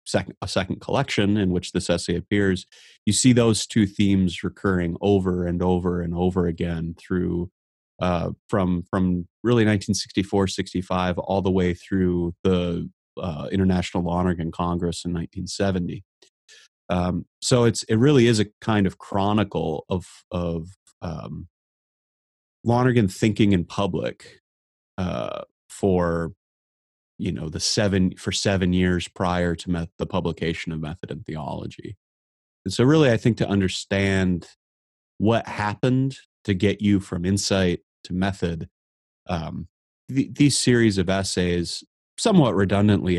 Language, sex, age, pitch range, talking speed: English, male, 30-49, 85-100 Hz, 135 wpm